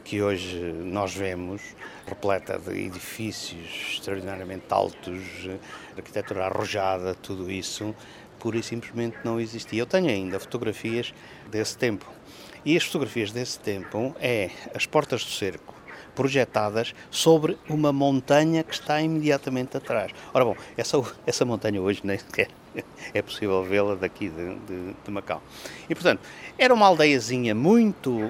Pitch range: 100-135 Hz